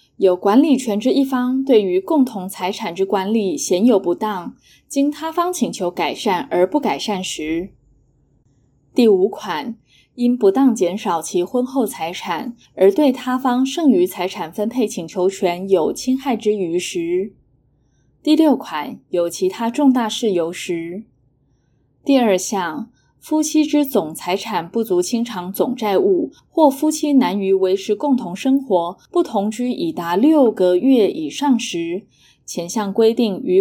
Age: 20-39